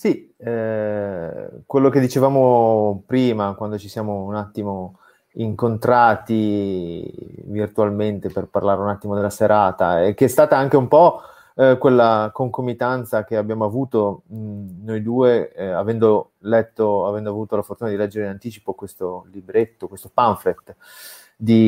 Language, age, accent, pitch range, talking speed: Italian, 30-49, native, 105-130 Hz, 140 wpm